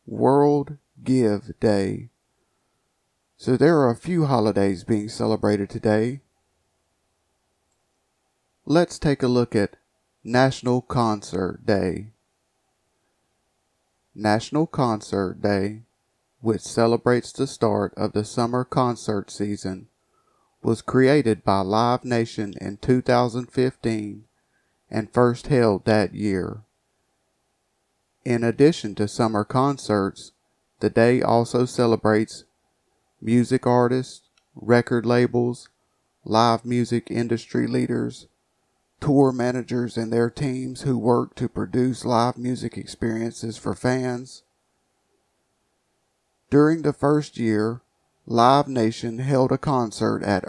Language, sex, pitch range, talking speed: English, male, 105-125 Hz, 100 wpm